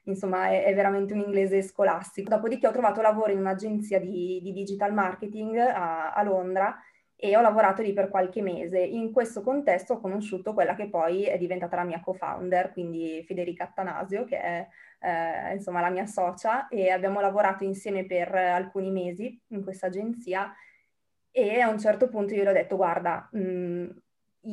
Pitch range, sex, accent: 185-210 Hz, female, native